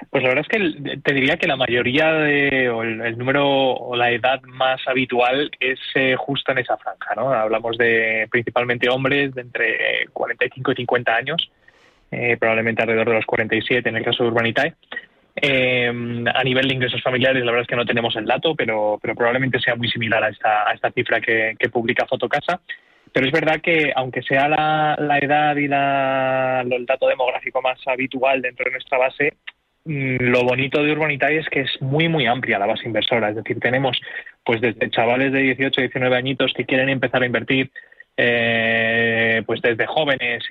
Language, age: Spanish, 20-39